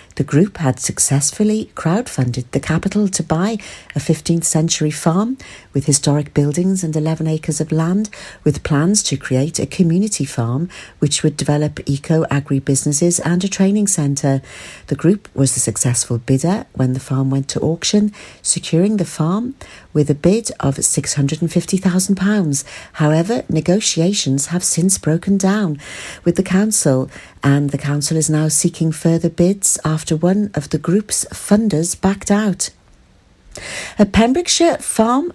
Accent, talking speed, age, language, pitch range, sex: British, 145 wpm, 50-69, English, 145-195 Hz, female